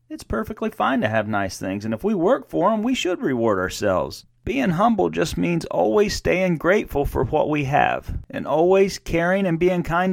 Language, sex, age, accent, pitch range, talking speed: English, male, 40-59, American, 125-160 Hz, 200 wpm